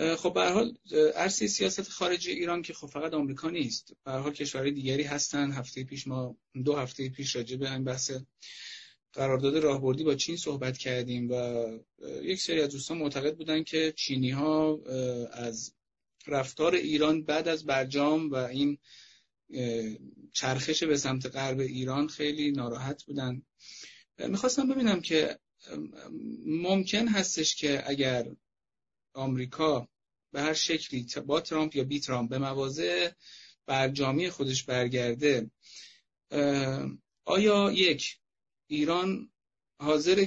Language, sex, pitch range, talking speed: Persian, male, 130-155 Hz, 120 wpm